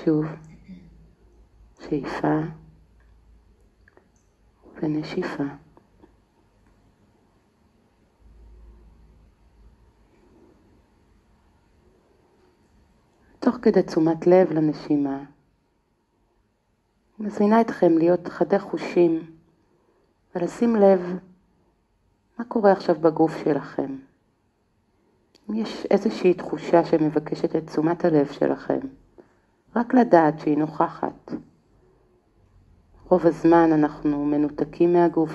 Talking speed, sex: 65 wpm, female